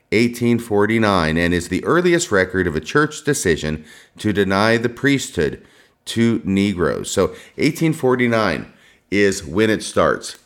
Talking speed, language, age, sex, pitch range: 125 wpm, English, 40-59, male, 85-120 Hz